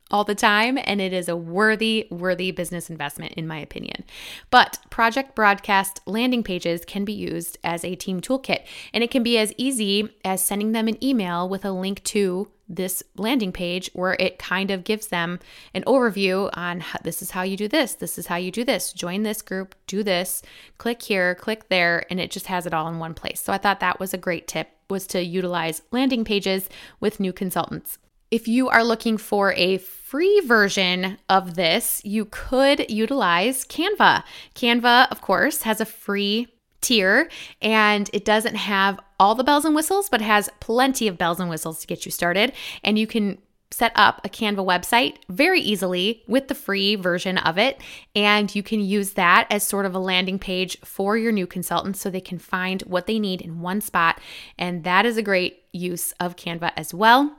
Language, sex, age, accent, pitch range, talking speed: English, female, 20-39, American, 180-220 Hz, 200 wpm